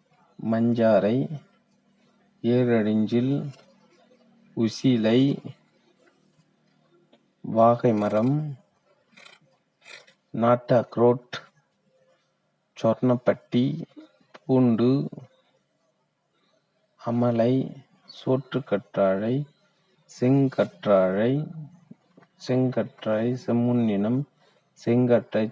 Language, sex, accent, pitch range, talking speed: Tamil, male, native, 120-165 Hz, 30 wpm